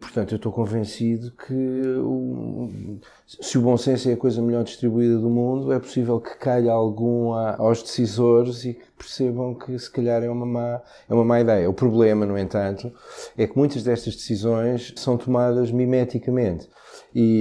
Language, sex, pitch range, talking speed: Portuguese, male, 105-130 Hz, 170 wpm